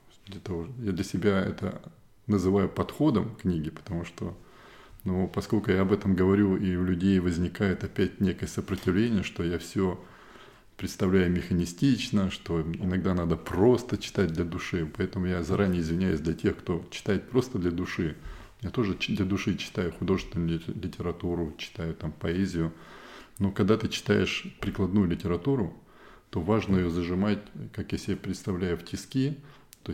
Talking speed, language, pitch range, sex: 150 wpm, Russian, 90-105 Hz, male